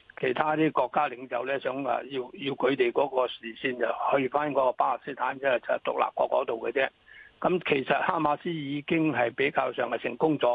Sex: male